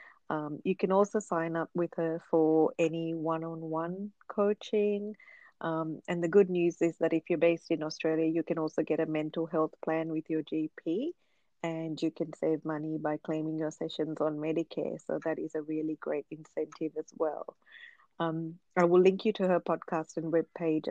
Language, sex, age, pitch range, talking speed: English, female, 30-49, 160-185 Hz, 190 wpm